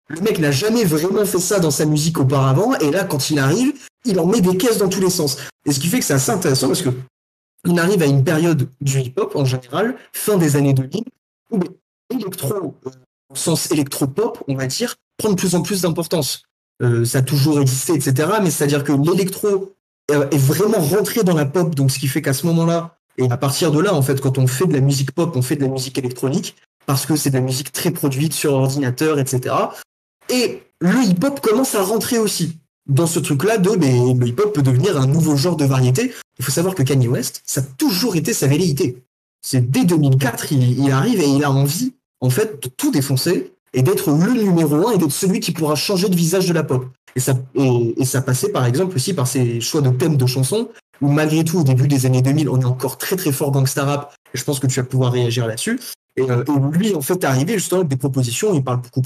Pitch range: 135-180 Hz